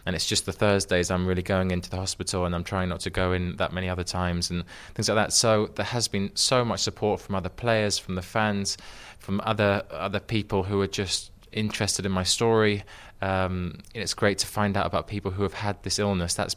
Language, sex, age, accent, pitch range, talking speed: English, male, 20-39, British, 95-110 Hz, 235 wpm